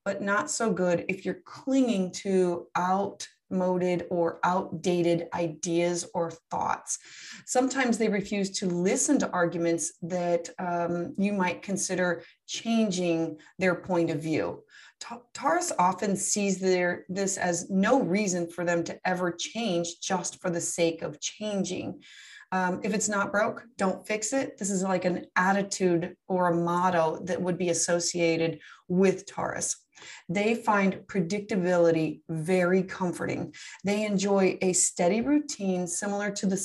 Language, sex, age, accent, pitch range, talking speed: English, female, 30-49, American, 175-210 Hz, 140 wpm